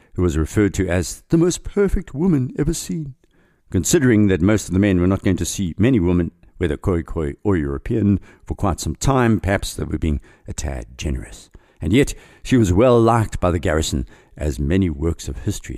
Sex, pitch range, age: male, 80-110 Hz, 60-79